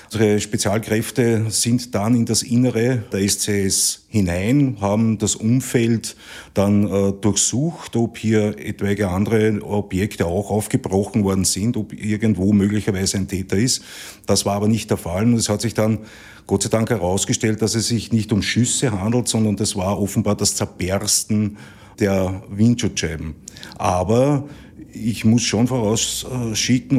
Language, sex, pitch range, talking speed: German, male, 100-115 Hz, 145 wpm